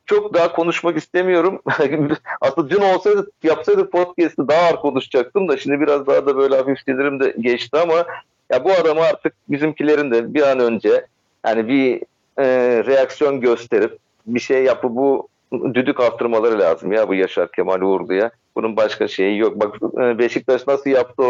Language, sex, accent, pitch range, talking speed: Turkish, male, native, 105-140 Hz, 160 wpm